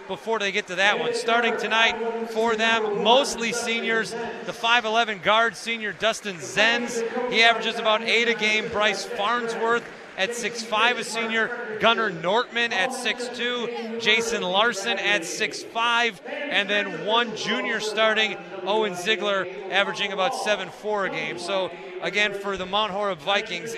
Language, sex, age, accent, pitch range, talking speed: English, male, 30-49, American, 165-230 Hz, 140 wpm